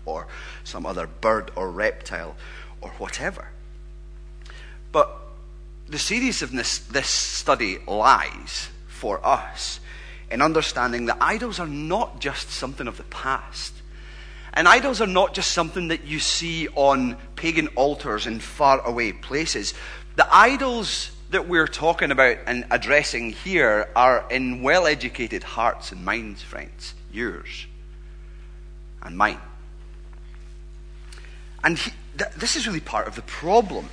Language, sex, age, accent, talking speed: English, male, 30-49, British, 130 wpm